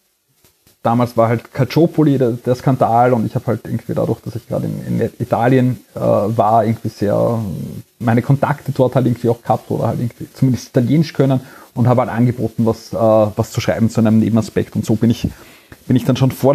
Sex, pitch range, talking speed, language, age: male, 115-140 Hz, 205 wpm, German, 30-49